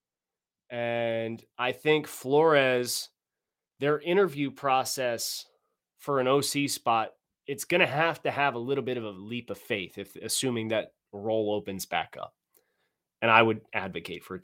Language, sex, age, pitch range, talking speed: English, male, 20-39, 120-155 Hz, 160 wpm